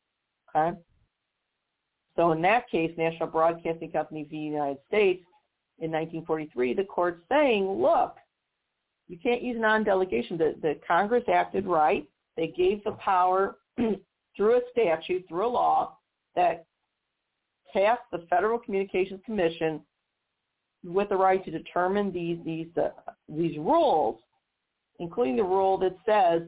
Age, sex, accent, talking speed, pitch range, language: 50-69, female, American, 130 wpm, 165-215 Hz, English